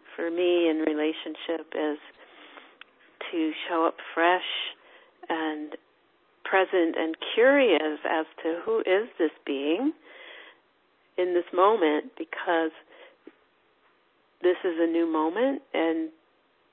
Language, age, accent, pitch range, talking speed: English, 40-59, American, 155-175 Hz, 105 wpm